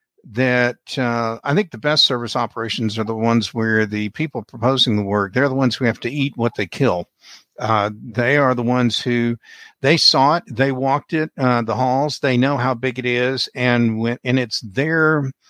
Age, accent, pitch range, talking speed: 60-79, American, 115-135 Hz, 200 wpm